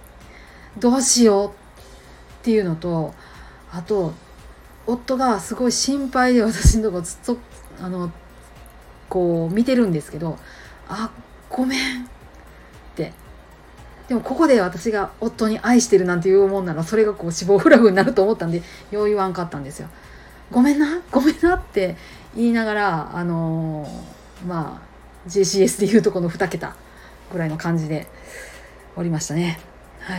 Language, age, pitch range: Japanese, 30-49, 165-220 Hz